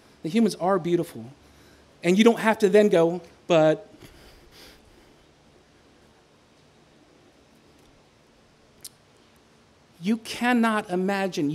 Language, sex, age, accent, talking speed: English, male, 40-59, American, 80 wpm